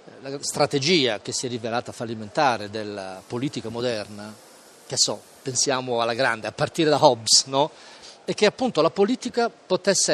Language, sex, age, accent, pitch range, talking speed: Italian, male, 40-59, native, 120-165 Hz, 150 wpm